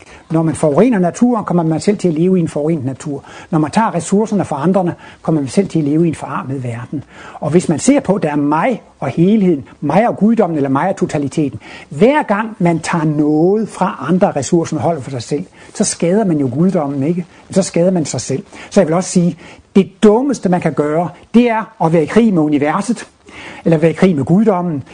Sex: male